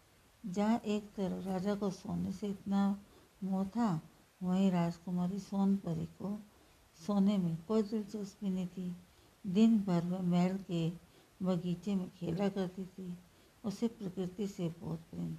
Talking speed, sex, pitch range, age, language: 135 wpm, female, 170-200 Hz, 60-79, Hindi